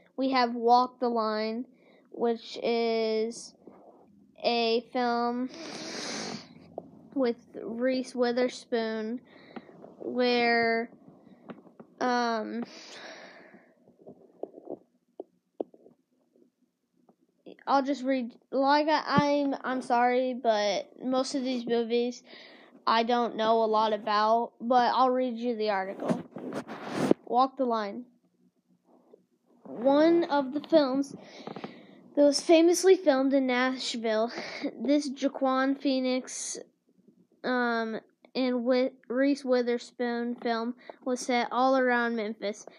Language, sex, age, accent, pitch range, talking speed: English, female, 20-39, American, 230-270 Hz, 90 wpm